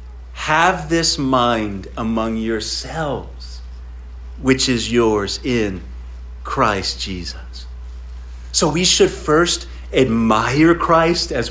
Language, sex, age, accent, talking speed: English, male, 40-59, American, 95 wpm